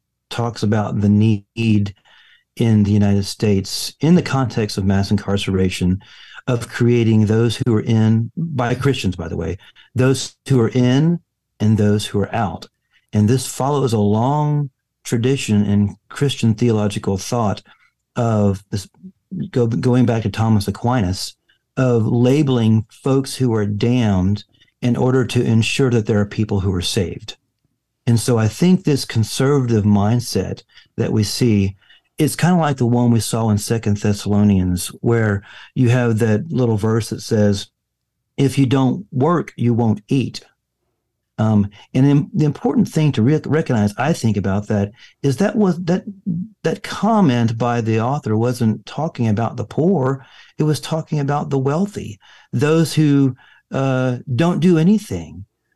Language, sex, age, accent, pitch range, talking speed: English, male, 50-69, American, 105-135 Hz, 155 wpm